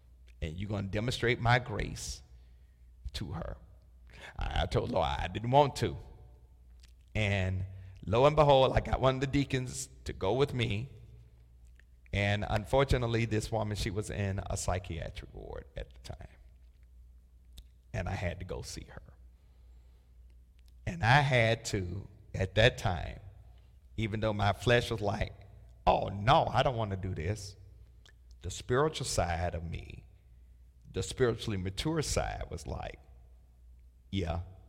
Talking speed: 145 wpm